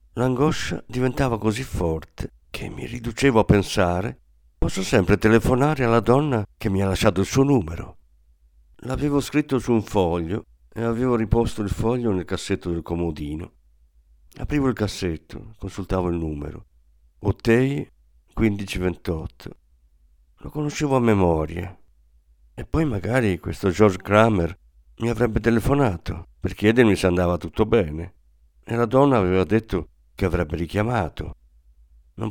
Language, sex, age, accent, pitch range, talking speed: Italian, male, 50-69, native, 80-120 Hz, 130 wpm